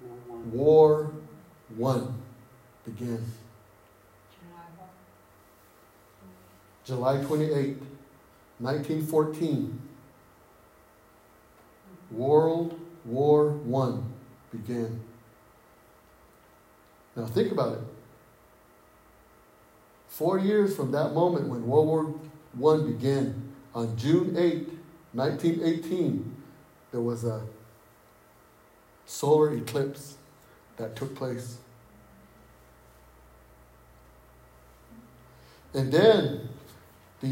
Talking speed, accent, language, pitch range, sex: 65 wpm, American, English, 105-155 Hz, male